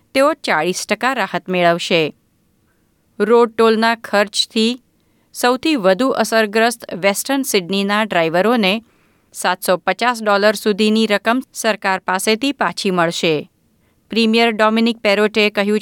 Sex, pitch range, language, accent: female, 185-245 Hz, Gujarati, native